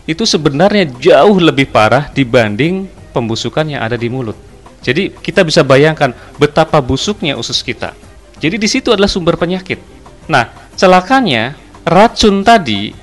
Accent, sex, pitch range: native, male, 120-180 Hz